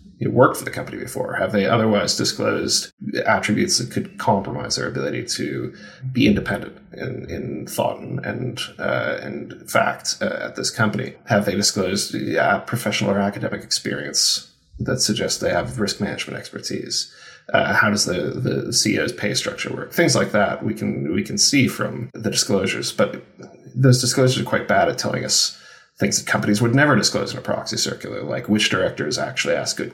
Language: English